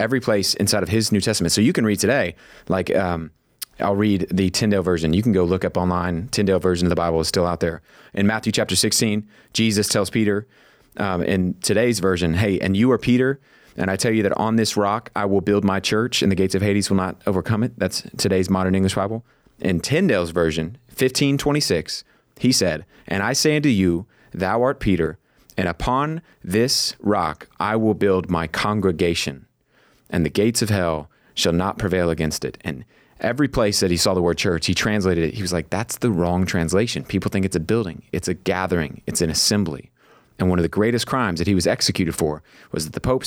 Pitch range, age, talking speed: 90-110 Hz, 30-49, 215 wpm